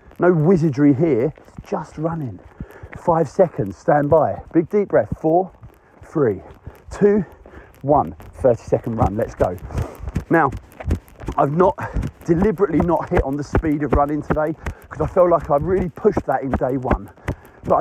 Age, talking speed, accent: 40-59, 155 wpm, British